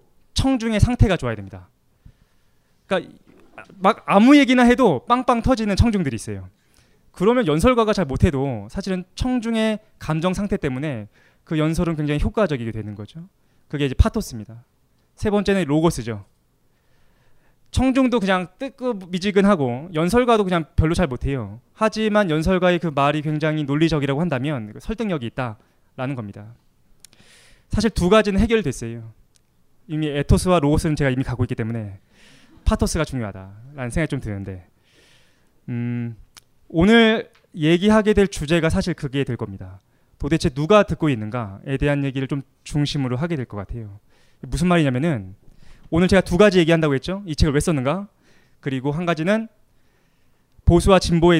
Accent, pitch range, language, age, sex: native, 125-195 Hz, Korean, 20-39, male